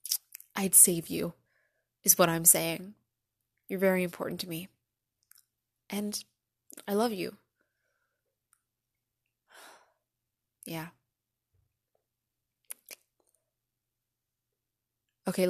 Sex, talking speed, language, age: female, 70 wpm, English, 20-39